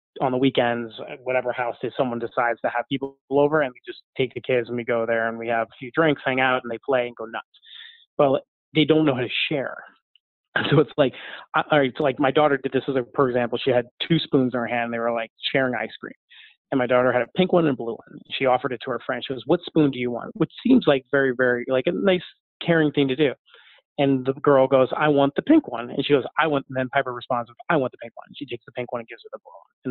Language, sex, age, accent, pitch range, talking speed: English, male, 30-49, American, 125-155 Hz, 285 wpm